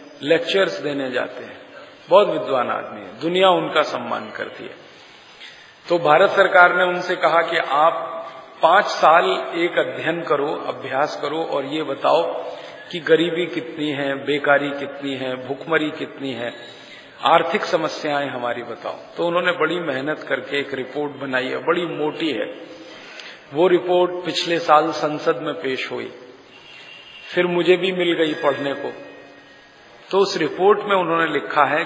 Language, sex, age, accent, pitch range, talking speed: Hindi, male, 40-59, native, 140-175 Hz, 150 wpm